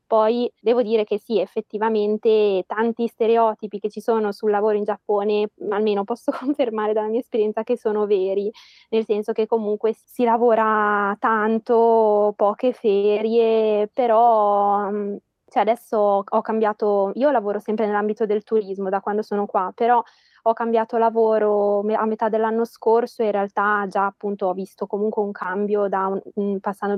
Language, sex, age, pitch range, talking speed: Italian, female, 20-39, 205-225 Hz, 145 wpm